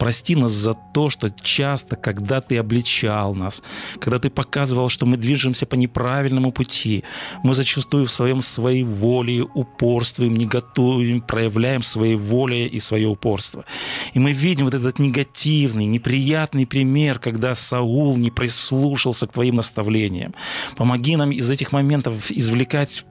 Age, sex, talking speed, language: 30-49, male, 145 wpm, Russian